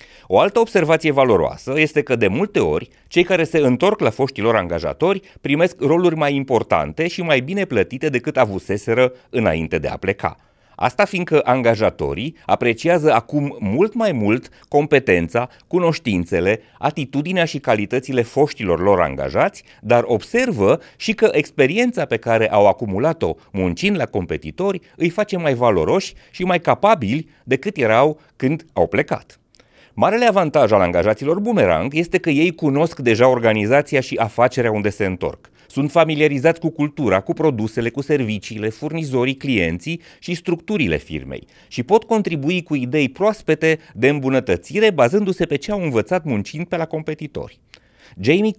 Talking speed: 145 wpm